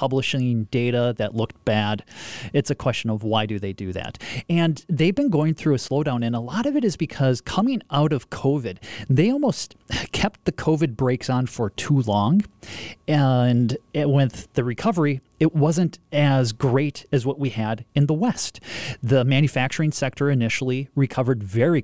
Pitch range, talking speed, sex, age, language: 115-155 Hz, 175 wpm, male, 30-49, English